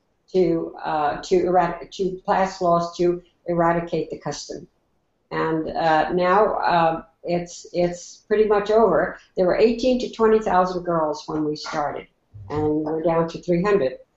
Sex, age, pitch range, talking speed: female, 60-79, 170-210 Hz, 145 wpm